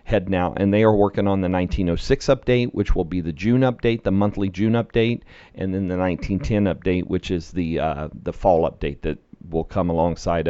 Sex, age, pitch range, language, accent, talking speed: male, 40-59, 95-115 Hz, English, American, 205 wpm